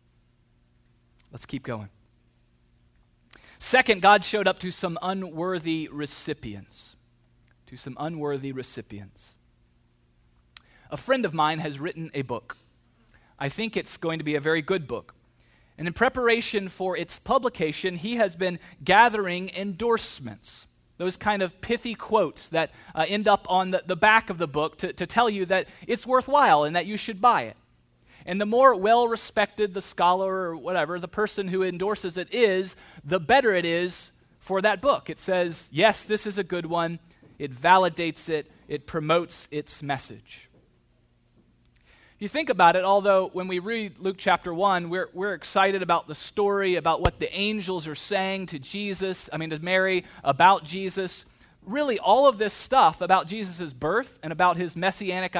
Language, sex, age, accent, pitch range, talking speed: English, male, 30-49, American, 150-200 Hz, 165 wpm